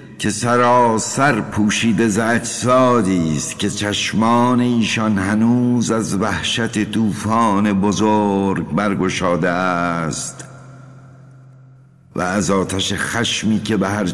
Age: 60-79